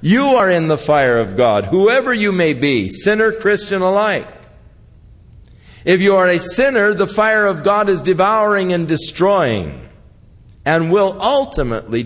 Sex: male